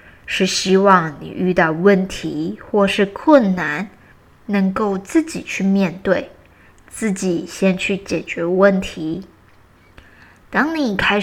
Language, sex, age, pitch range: Chinese, female, 20-39, 175-225 Hz